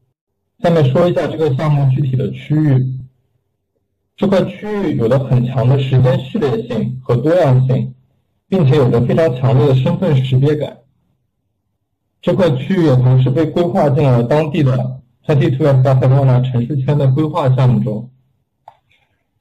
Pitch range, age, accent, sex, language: 125-150 Hz, 60-79, native, male, Chinese